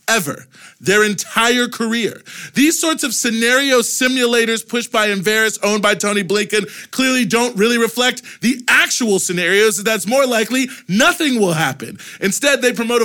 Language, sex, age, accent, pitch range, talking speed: English, male, 20-39, American, 185-240 Hz, 145 wpm